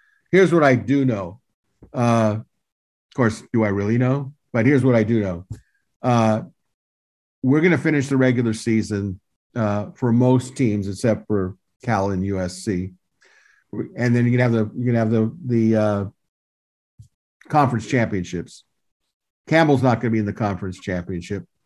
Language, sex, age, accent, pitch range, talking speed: English, male, 50-69, American, 105-130 Hz, 155 wpm